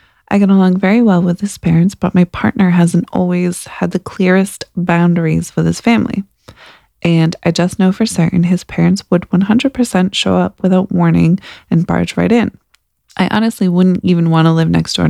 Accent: American